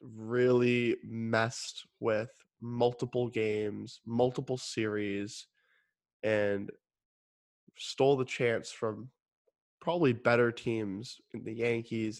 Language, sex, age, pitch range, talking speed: English, male, 20-39, 110-135 Hz, 85 wpm